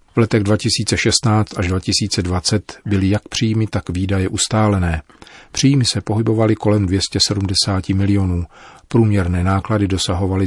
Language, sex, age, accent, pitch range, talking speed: Czech, male, 40-59, native, 90-110 Hz, 115 wpm